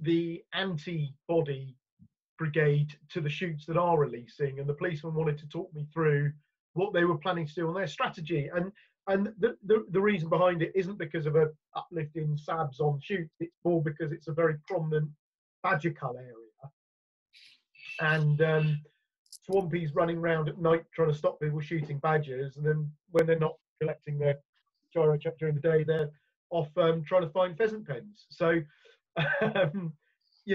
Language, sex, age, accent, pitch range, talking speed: English, male, 30-49, British, 150-180 Hz, 175 wpm